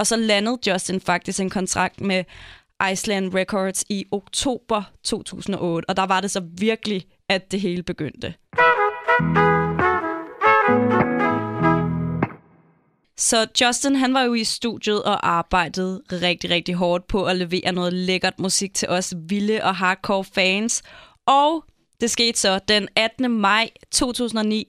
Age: 20-39